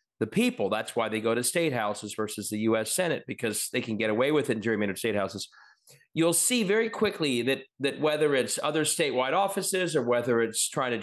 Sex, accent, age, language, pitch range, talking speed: male, American, 40-59, English, 135-195 Hz, 210 wpm